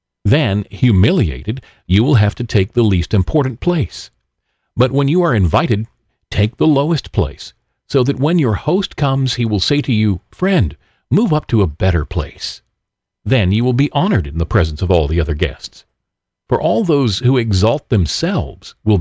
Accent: American